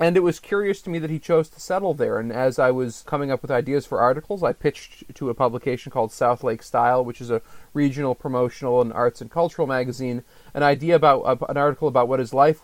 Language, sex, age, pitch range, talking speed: English, male, 30-49, 120-145 Hz, 240 wpm